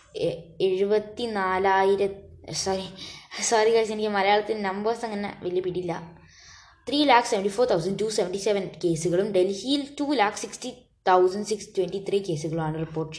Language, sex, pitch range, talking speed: Malayalam, female, 165-215 Hz, 130 wpm